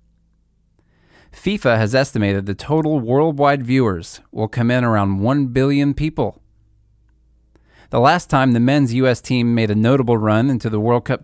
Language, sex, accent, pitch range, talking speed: English, male, American, 110-145 Hz, 155 wpm